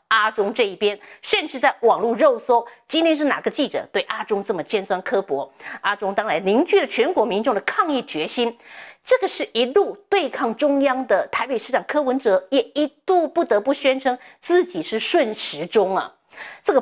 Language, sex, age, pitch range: Chinese, female, 50-69, 225-330 Hz